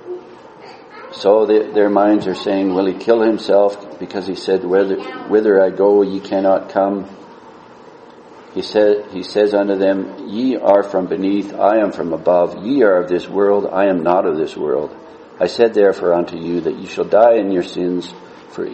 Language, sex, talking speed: English, male, 185 wpm